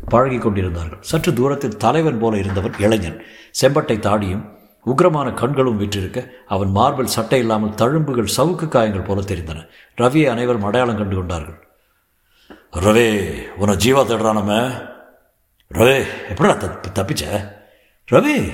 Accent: native